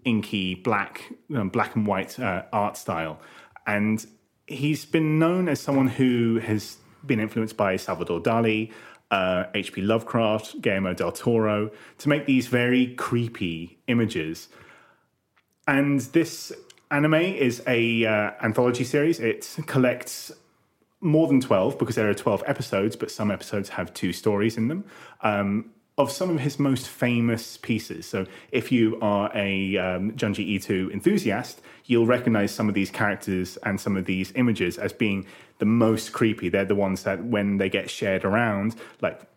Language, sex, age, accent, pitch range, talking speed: English, male, 30-49, British, 100-125 Hz, 155 wpm